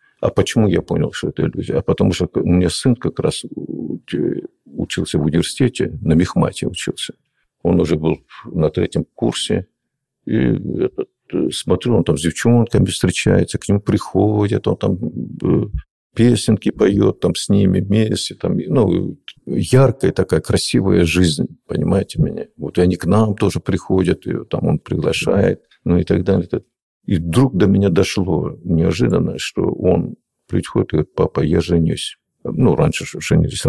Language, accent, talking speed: Russian, native, 155 wpm